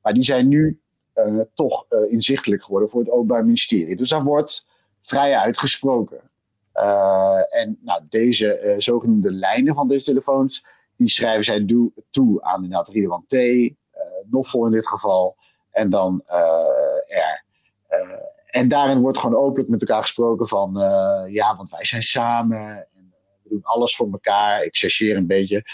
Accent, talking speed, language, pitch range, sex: Dutch, 175 wpm, Dutch, 105-140 Hz, male